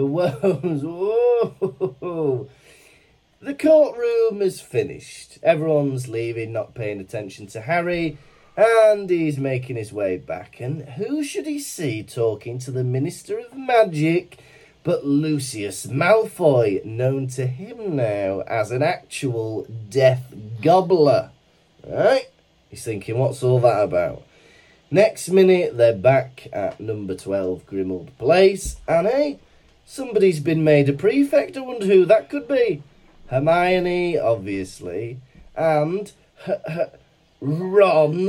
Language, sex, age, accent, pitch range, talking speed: English, male, 30-49, British, 125-205 Hz, 115 wpm